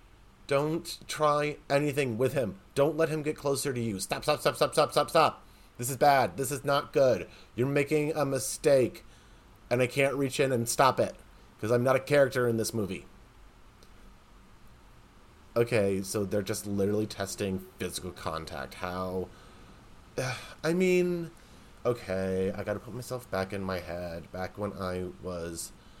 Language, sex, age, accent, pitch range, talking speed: English, male, 30-49, American, 90-125 Hz, 165 wpm